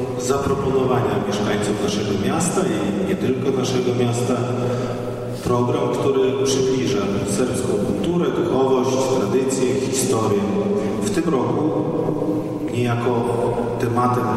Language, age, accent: Polish, 40-59, native